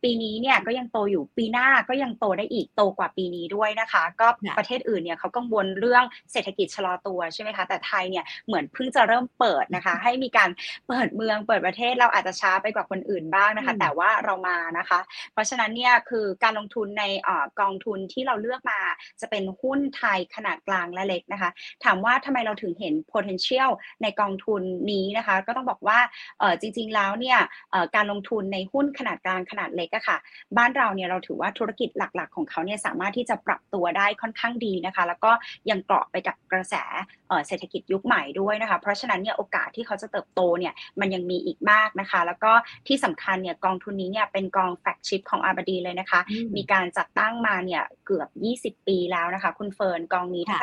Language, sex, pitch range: English, female, 185-235 Hz